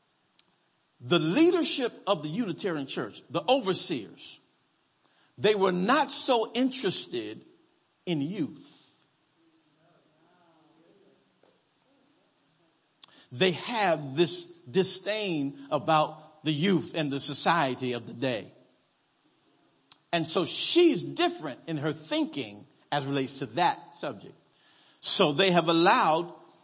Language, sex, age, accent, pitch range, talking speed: English, male, 50-69, American, 150-205 Hz, 100 wpm